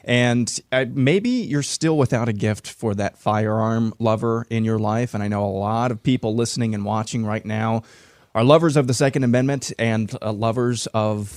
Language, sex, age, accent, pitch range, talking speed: English, male, 20-39, American, 110-140 Hz, 185 wpm